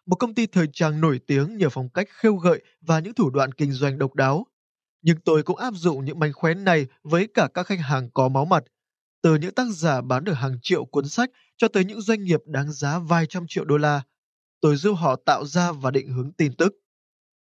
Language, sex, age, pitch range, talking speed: Vietnamese, male, 20-39, 145-190 Hz, 235 wpm